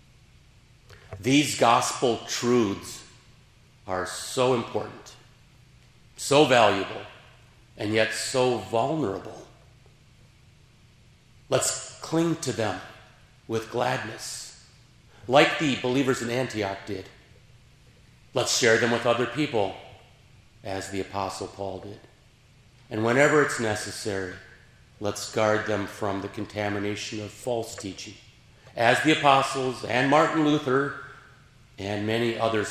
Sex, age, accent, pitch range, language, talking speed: male, 50-69, American, 105-125 Hz, English, 105 wpm